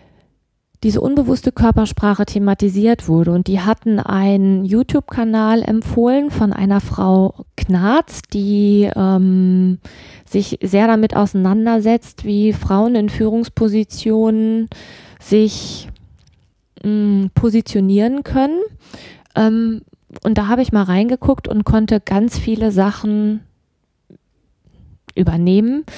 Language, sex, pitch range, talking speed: German, female, 190-220 Hz, 95 wpm